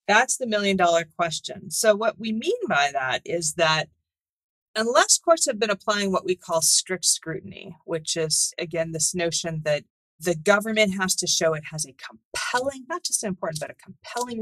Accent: American